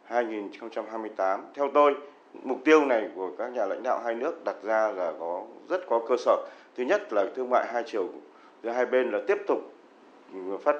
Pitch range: 105-145 Hz